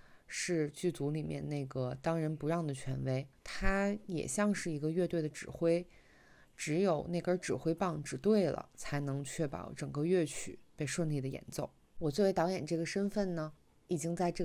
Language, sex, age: Chinese, female, 20-39